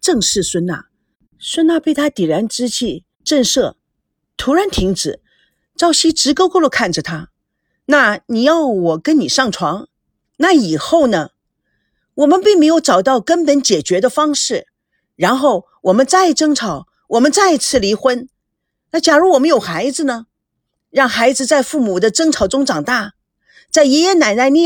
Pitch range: 210-320 Hz